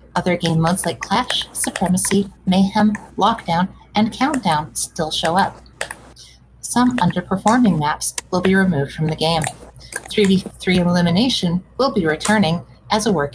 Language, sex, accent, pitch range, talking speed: English, female, American, 165-205 Hz, 135 wpm